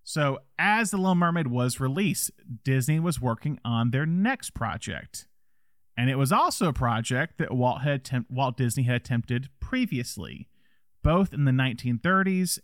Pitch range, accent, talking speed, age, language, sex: 120-160 Hz, American, 155 wpm, 30-49, English, male